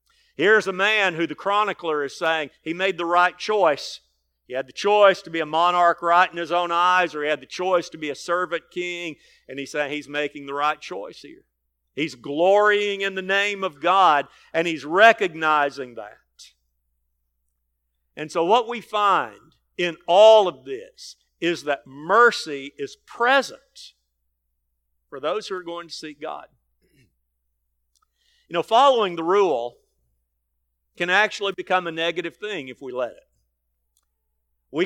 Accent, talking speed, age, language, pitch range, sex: American, 160 wpm, 50-69, English, 120-190 Hz, male